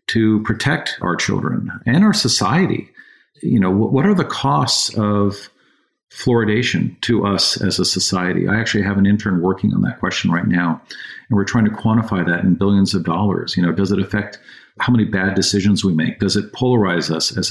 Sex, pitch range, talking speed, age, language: male, 95-115 Hz, 195 wpm, 50-69, English